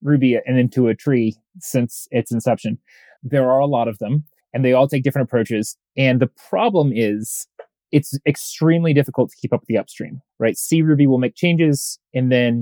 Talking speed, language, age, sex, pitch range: 195 wpm, English, 20-39, male, 125-150 Hz